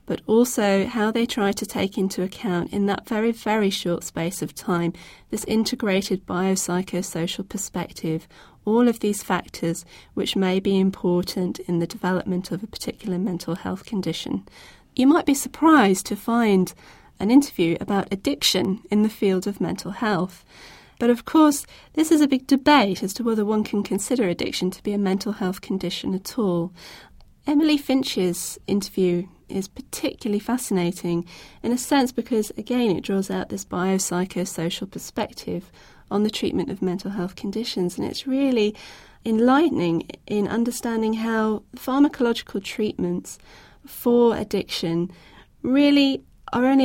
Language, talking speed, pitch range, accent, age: English, 145 wpm, 185-235 Hz, British, 40-59